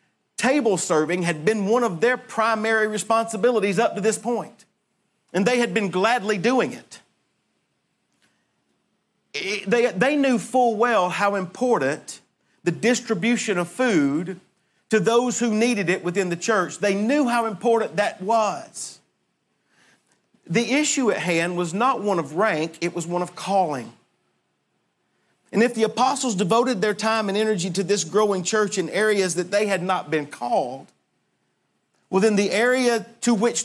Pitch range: 175-225 Hz